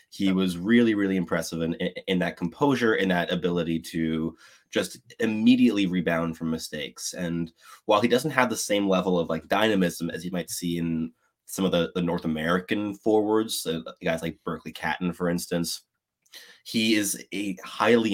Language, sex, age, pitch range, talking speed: English, male, 20-39, 80-95 Hz, 175 wpm